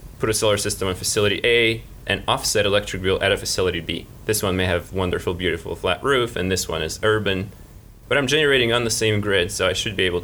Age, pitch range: 20-39, 95-110 Hz